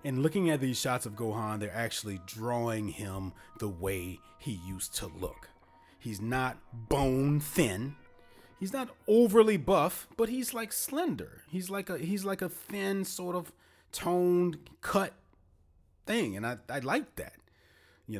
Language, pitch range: English, 100-155 Hz